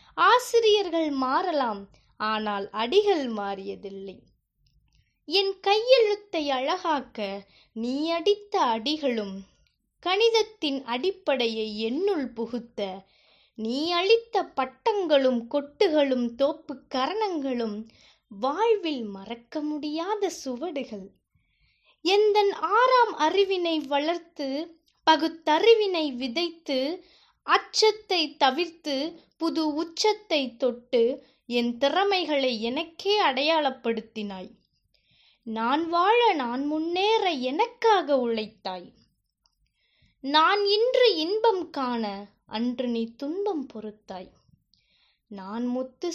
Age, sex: 20-39, female